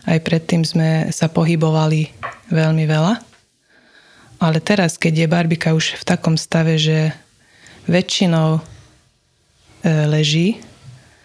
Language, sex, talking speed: Slovak, female, 105 wpm